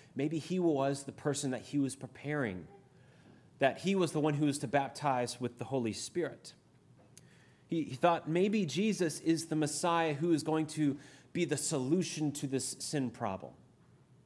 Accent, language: American, English